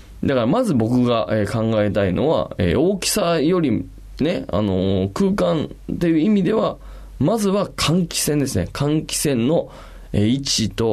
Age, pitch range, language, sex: 20-39, 95-145 Hz, Japanese, male